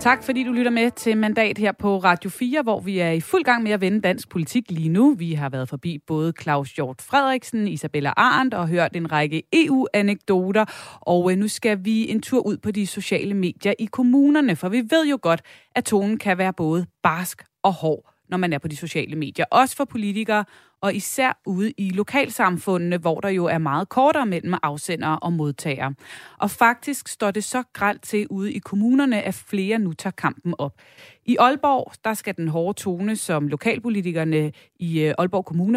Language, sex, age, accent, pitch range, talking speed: Danish, female, 30-49, native, 170-220 Hz, 195 wpm